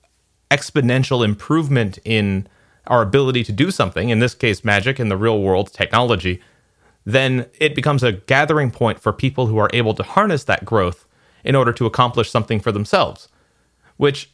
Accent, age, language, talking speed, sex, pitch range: American, 30-49, English, 165 wpm, male, 110-145 Hz